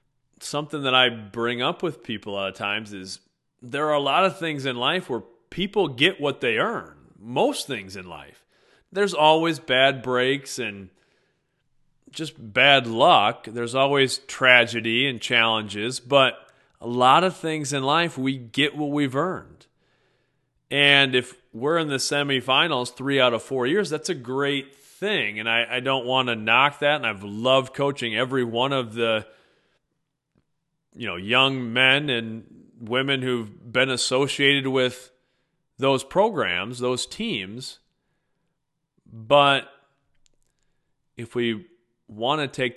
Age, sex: 30-49, male